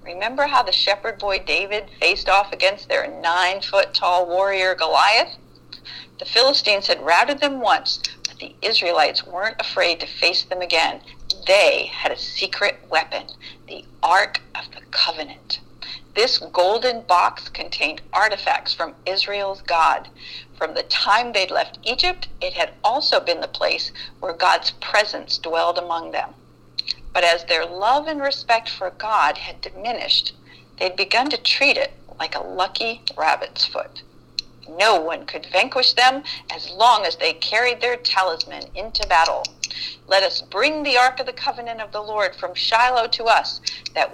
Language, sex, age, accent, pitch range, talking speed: English, female, 50-69, American, 190-265 Hz, 155 wpm